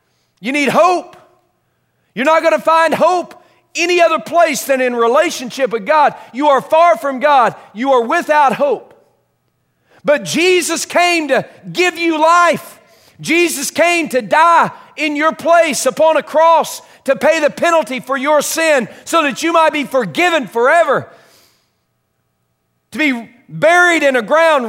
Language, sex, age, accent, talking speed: English, male, 40-59, American, 155 wpm